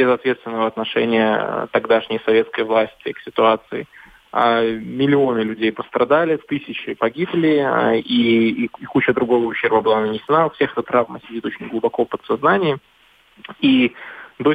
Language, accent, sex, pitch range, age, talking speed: Russian, native, male, 115-135 Hz, 20-39, 125 wpm